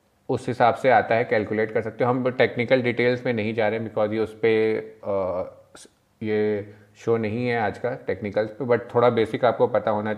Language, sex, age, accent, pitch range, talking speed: Hindi, male, 30-49, native, 110-135 Hz, 205 wpm